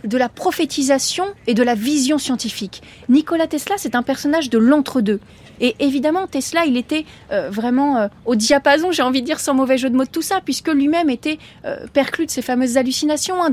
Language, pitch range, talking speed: French, 235-300 Hz, 210 wpm